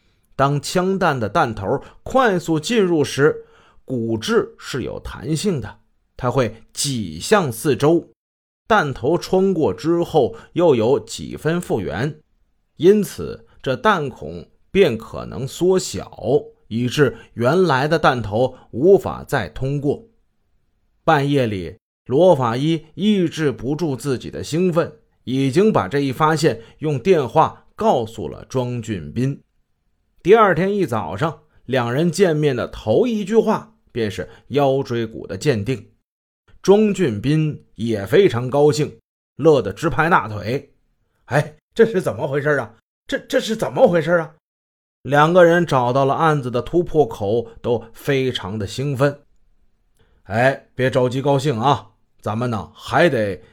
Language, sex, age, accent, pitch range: Chinese, male, 30-49, native, 115-165 Hz